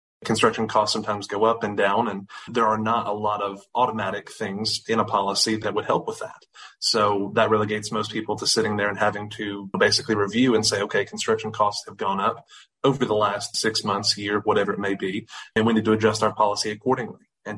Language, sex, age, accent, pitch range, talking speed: English, male, 30-49, American, 105-110 Hz, 220 wpm